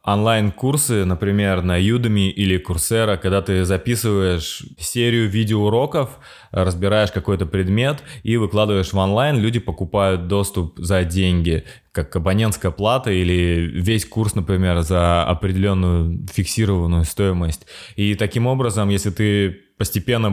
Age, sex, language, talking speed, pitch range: 20-39, male, Russian, 120 wpm, 90-105 Hz